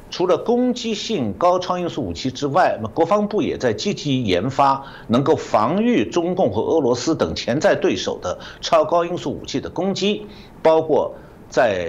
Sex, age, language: male, 60-79, Chinese